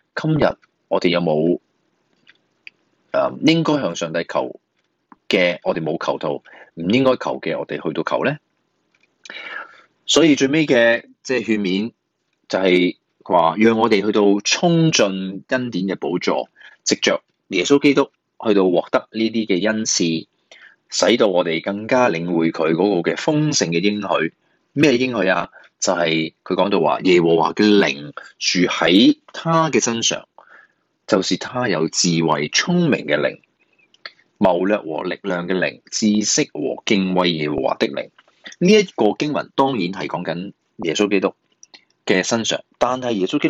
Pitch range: 90-135 Hz